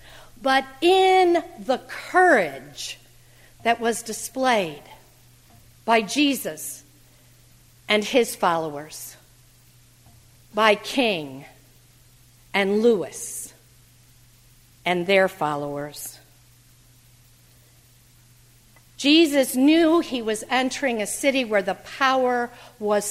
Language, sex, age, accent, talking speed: English, female, 50-69, American, 80 wpm